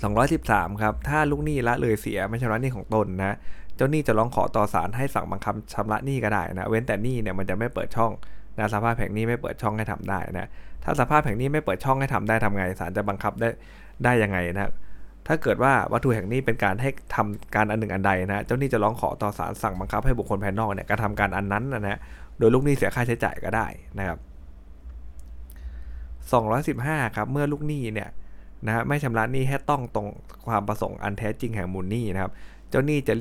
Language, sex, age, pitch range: Thai, male, 20-39, 95-120 Hz